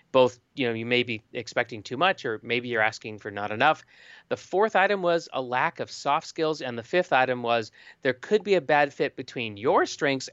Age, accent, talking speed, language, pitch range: 40-59, American, 225 wpm, English, 125-170 Hz